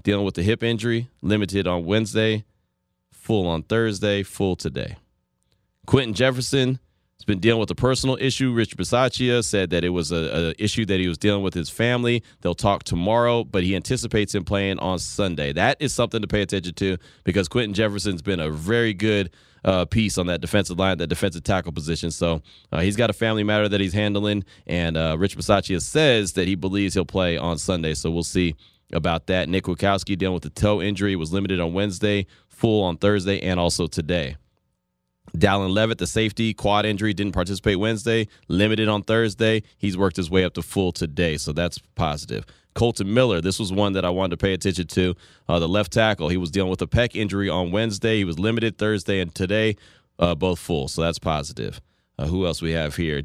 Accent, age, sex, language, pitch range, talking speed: American, 30-49, male, English, 90-110 Hz, 205 wpm